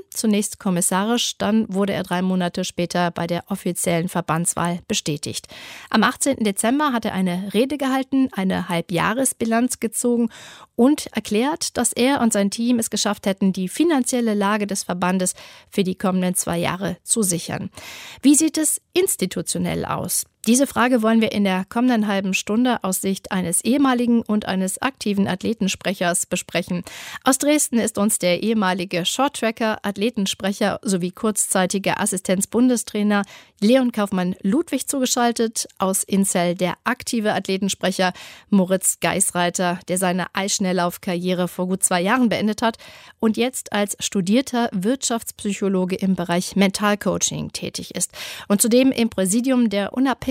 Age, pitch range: 40-59, 185-235 Hz